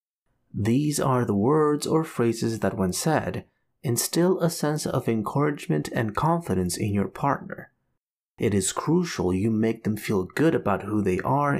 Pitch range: 105-155 Hz